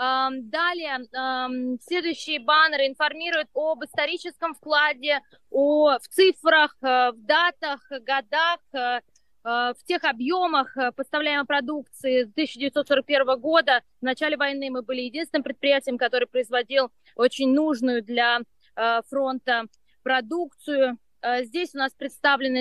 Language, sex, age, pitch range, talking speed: Russian, female, 20-39, 260-300 Hz, 100 wpm